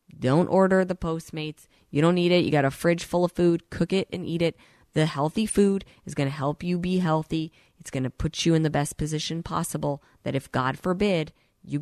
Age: 30-49